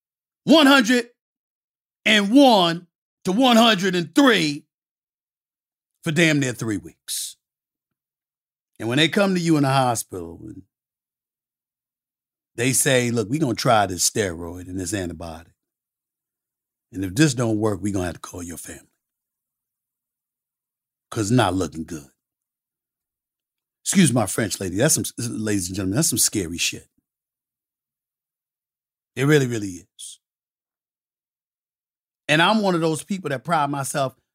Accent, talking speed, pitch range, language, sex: American, 130 wpm, 115-165 Hz, English, male